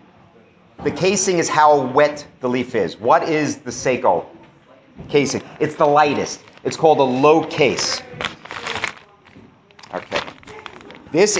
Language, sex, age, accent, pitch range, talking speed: English, male, 40-59, American, 145-180 Hz, 120 wpm